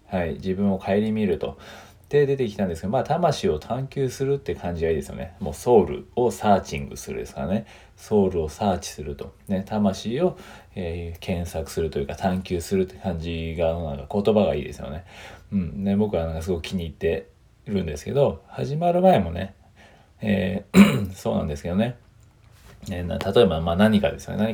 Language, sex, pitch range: Japanese, male, 85-120 Hz